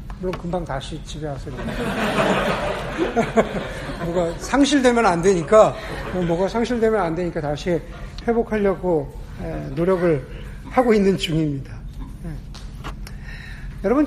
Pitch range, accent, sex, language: 160-215 Hz, native, male, Korean